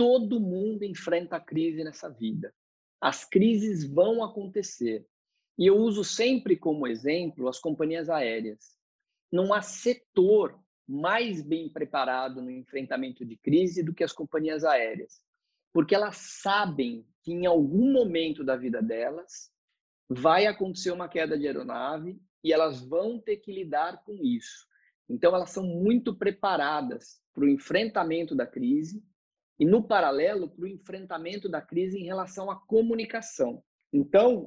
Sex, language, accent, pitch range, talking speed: male, Portuguese, Brazilian, 160-215 Hz, 145 wpm